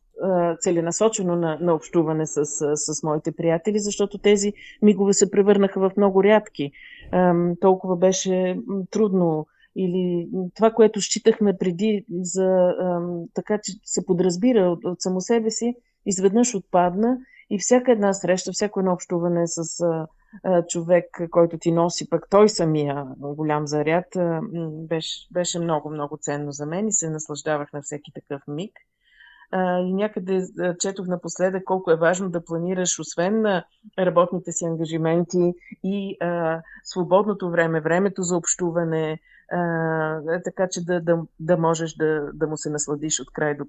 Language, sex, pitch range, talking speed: Bulgarian, female, 160-190 Hz, 145 wpm